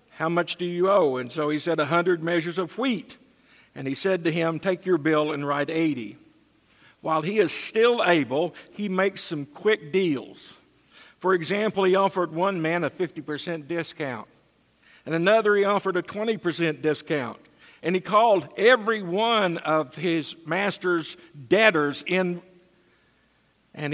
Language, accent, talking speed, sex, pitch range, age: English, American, 155 wpm, male, 150-185 Hz, 50-69